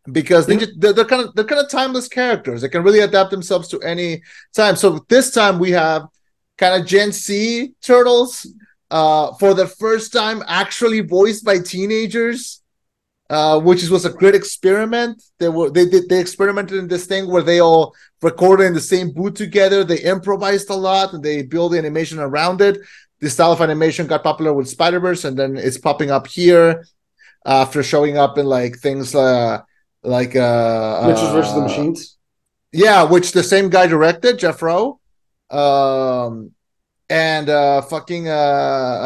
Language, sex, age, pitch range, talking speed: English, male, 30-49, 150-195 Hz, 175 wpm